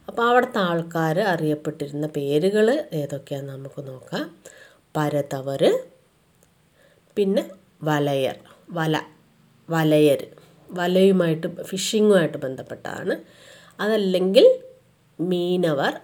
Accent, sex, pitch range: Indian, female, 160-225 Hz